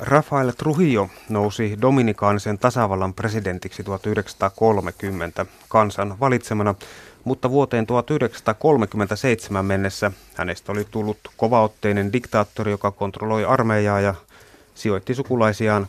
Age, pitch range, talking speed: 30-49, 100-120 Hz, 90 wpm